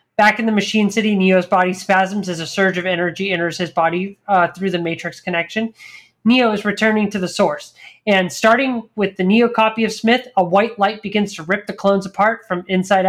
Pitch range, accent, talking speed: 180-225 Hz, American, 210 wpm